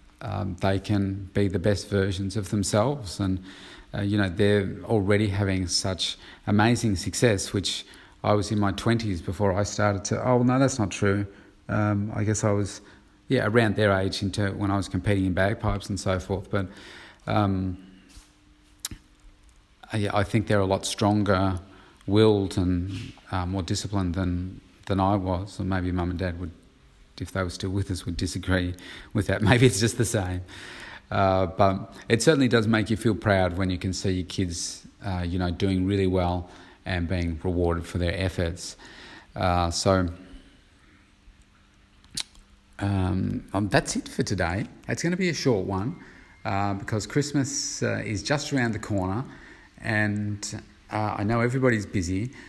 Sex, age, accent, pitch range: male, 30-49, Australian, 95-105 Hz